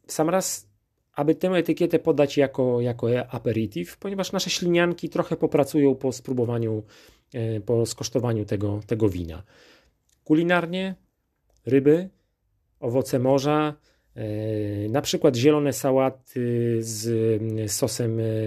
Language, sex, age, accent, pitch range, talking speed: Polish, male, 30-49, native, 105-130 Hz, 100 wpm